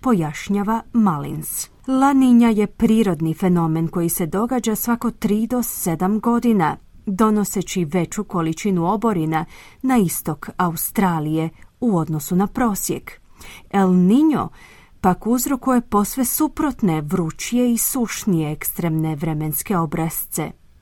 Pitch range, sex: 175-230 Hz, female